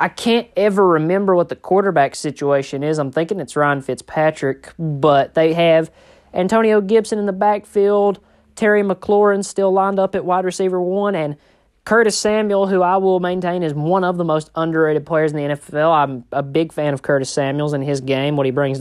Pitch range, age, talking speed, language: 145-200 Hz, 20-39, 195 wpm, English